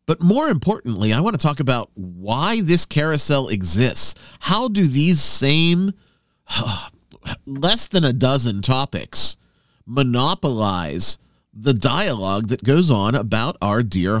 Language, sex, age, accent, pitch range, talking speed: English, male, 40-59, American, 110-165 Hz, 130 wpm